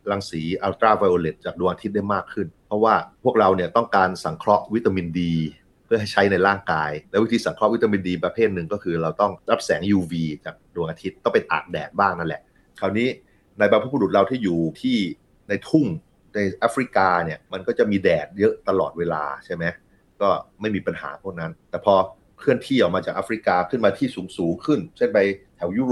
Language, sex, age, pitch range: Thai, male, 30-49, 85-105 Hz